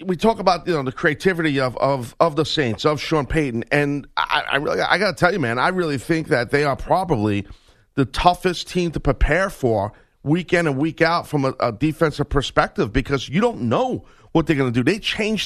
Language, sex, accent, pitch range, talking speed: English, male, American, 135-180 Hz, 230 wpm